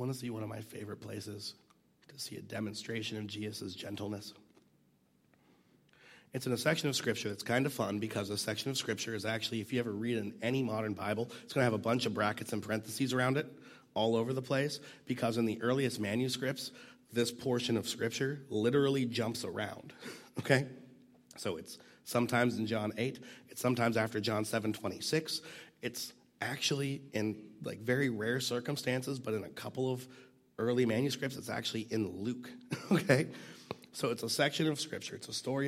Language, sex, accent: English, male, American